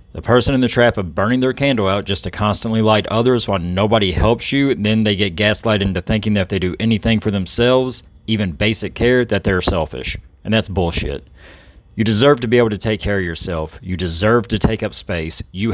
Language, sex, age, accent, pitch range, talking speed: English, male, 40-59, American, 95-120 Hz, 225 wpm